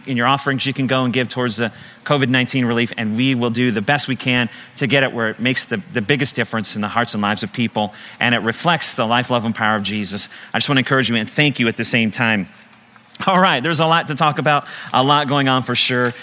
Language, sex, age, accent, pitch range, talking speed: English, male, 40-59, American, 120-160 Hz, 275 wpm